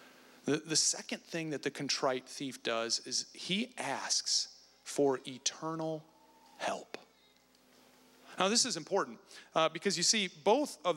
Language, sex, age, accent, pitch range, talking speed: English, male, 40-59, American, 165-255 Hz, 130 wpm